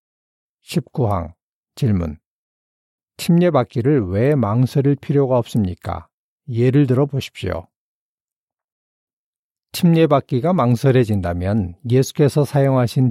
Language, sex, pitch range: Korean, male, 105-140 Hz